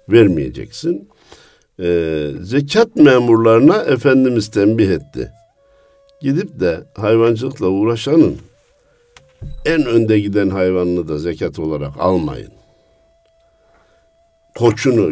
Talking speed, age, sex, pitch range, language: 80 wpm, 60-79, male, 105-155 Hz, Turkish